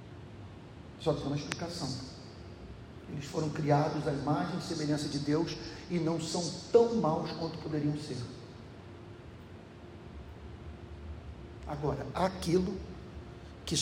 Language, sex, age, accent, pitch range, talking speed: Portuguese, male, 50-69, Brazilian, 140-185 Hz, 115 wpm